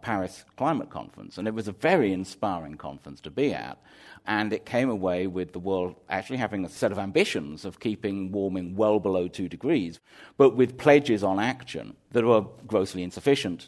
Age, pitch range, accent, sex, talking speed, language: 50-69, 95-120 Hz, British, male, 185 wpm, English